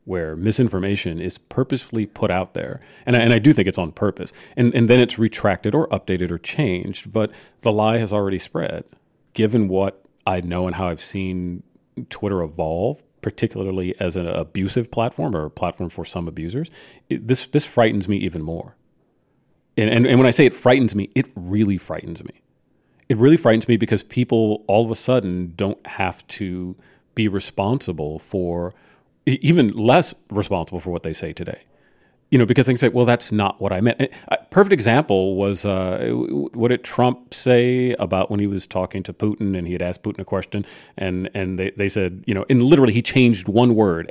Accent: American